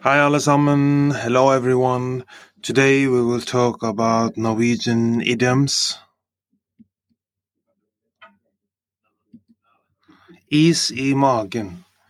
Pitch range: 115-135 Hz